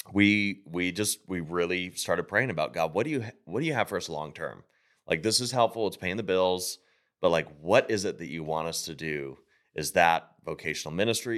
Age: 30-49